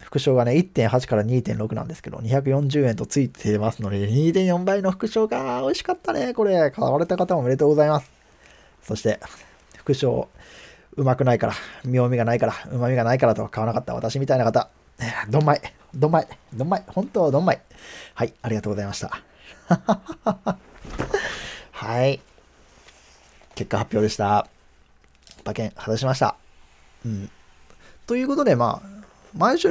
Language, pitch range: Japanese, 110-175 Hz